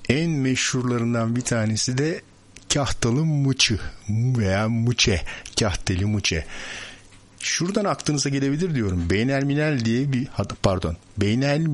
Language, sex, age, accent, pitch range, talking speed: Turkish, male, 60-79, native, 95-125 Hz, 100 wpm